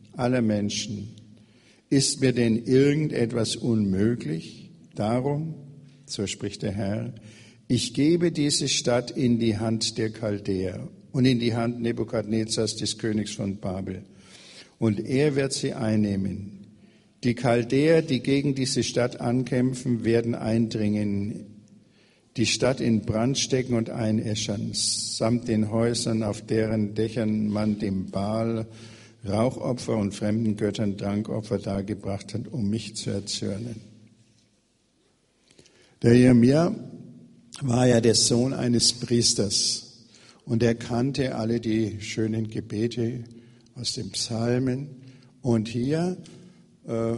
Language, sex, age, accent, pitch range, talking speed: German, male, 60-79, German, 110-125 Hz, 115 wpm